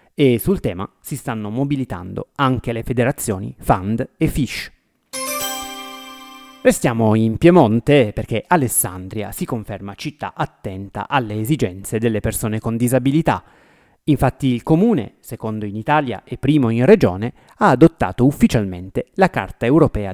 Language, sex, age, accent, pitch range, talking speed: Italian, male, 30-49, native, 105-140 Hz, 130 wpm